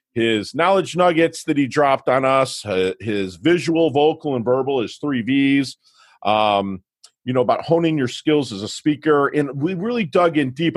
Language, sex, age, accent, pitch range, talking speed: English, male, 40-59, American, 115-160 Hz, 180 wpm